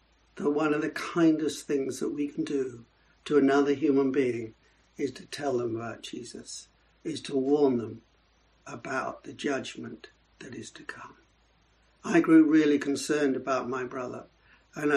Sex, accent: male, British